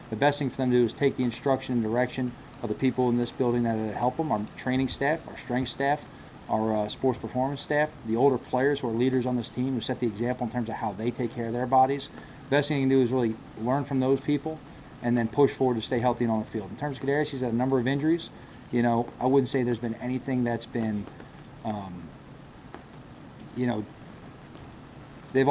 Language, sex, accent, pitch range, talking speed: English, male, American, 120-135 Hz, 240 wpm